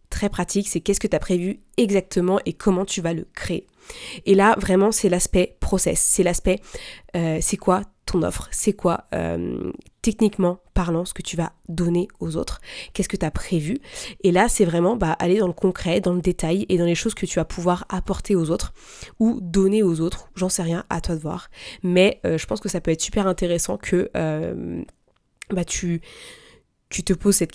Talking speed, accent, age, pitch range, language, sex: 210 wpm, French, 20-39, 170-200 Hz, French, female